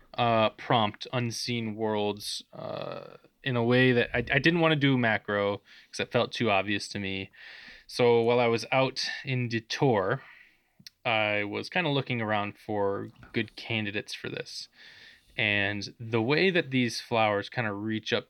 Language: English